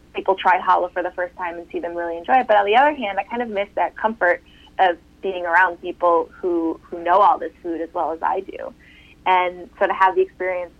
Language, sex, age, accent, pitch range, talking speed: English, female, 20-39, American, 165-195 Hz, 250 wpm